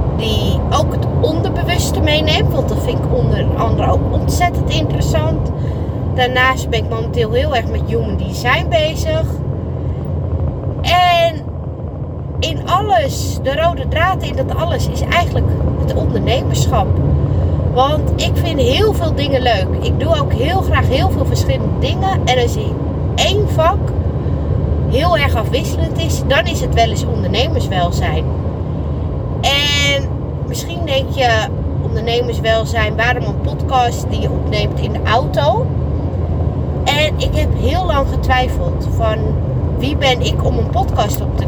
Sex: female